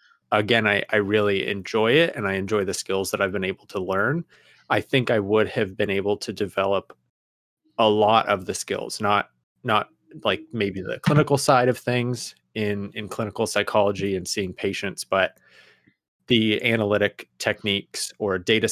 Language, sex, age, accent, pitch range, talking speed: English, male, 20-39, American, 100-120 Hz, 170 wpm